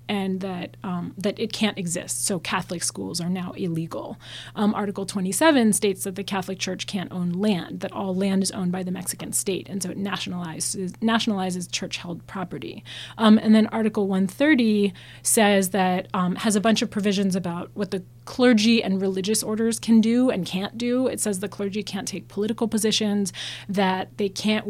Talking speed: 180 wpm